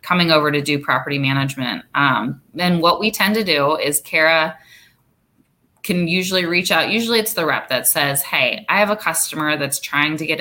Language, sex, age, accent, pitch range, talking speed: English, female, 20-39, American, 140-165 Hz, 195 wpm